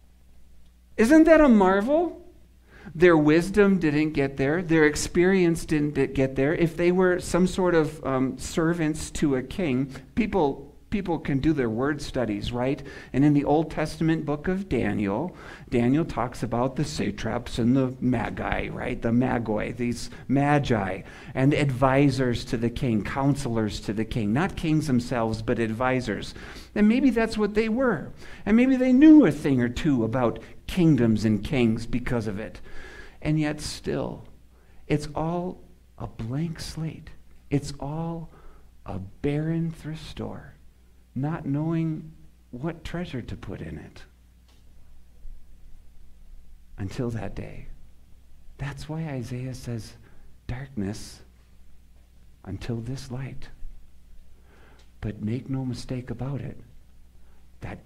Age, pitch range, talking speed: 50-69, 100-155 Hz, 135 wpm